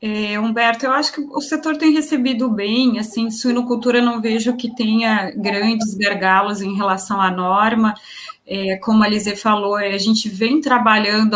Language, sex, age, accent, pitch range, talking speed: Portuguese, female, 20-39, Brazilian, 210-245 Hz, 155 wpm